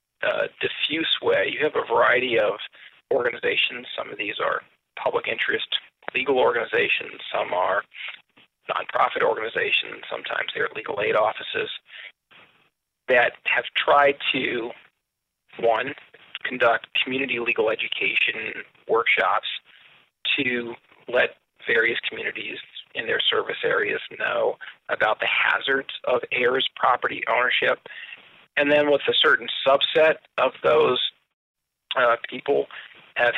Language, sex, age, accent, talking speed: English, male, 40-59, American, 115 wpm